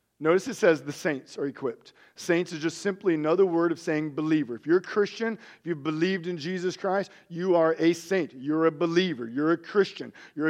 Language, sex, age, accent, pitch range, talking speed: English, male, 40-59, American, 145-185 Hz, 210 wpm